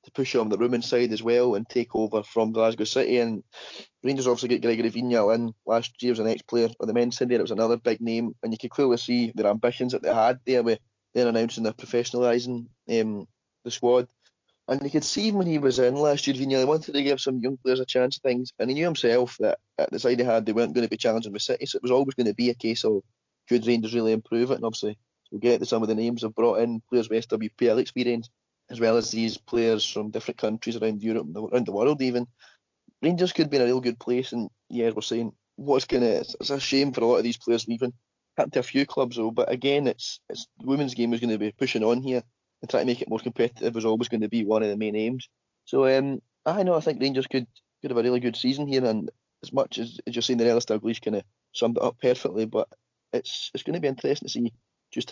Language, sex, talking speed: English, male, 260 wpm